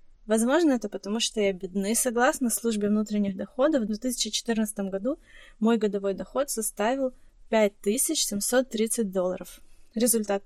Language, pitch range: Ukrainian, 205-235 Hz